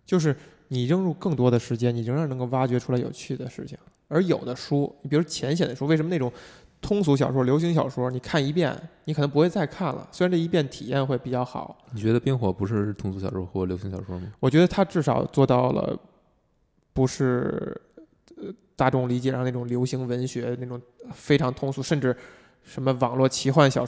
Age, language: 20-39, Chinese